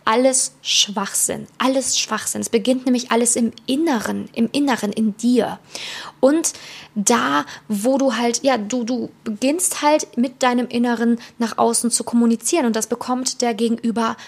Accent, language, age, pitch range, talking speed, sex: German, German, 20-39, 225-255 Hz, 150 wpm, female